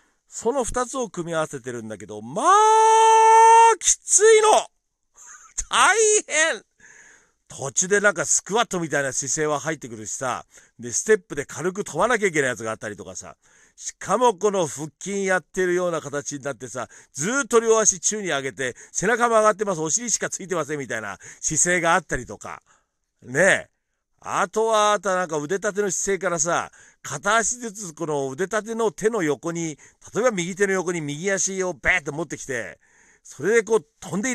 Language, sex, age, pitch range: Japanese, male, 50-69, 150-230 Hz